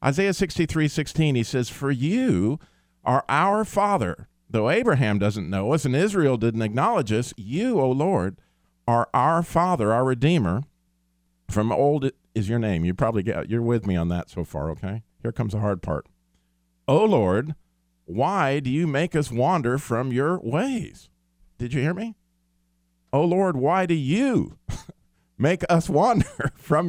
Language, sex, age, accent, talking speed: English, male, 50-69, American, 165 wpm